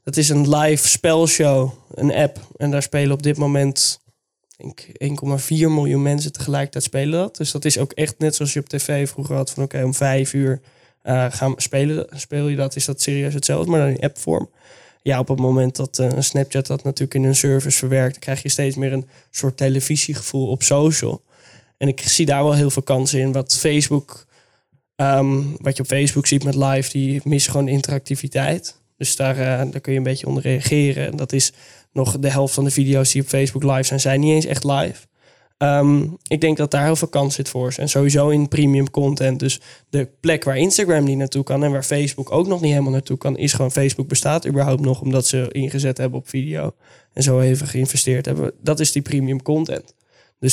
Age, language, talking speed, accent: 10-29, Dutch, 215 wpm, Dutch